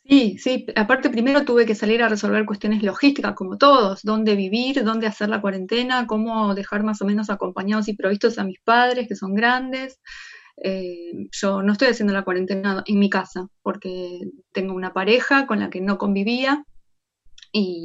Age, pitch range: 20-39, 195-235 Hz